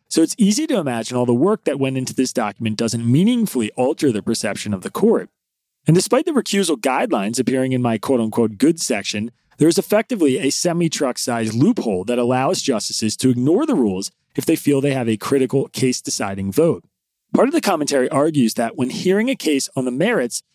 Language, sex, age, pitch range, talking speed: English, male, 30-49, 115-165 Hz, 195 wpm